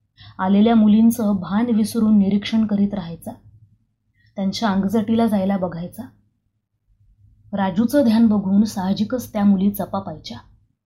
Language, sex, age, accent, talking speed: Marathi, female, 20-39, native, 100 wpm